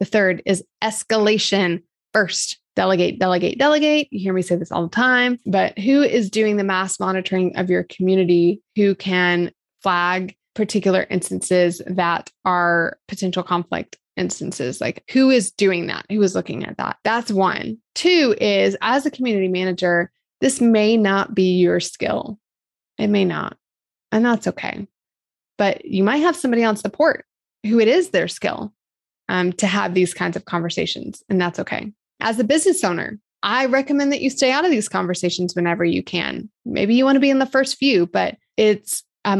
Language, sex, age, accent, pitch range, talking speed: English, female, 20-39, American, 180-235 Hz, 175 wpm